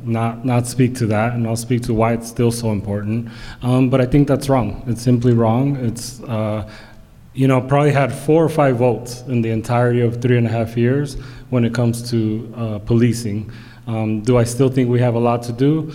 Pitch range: 115-125 Hz